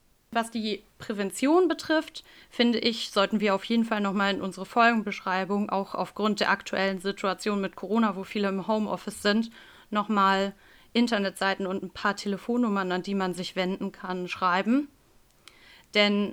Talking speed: 160 wpm